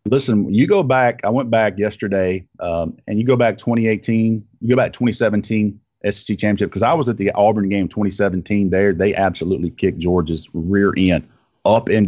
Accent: American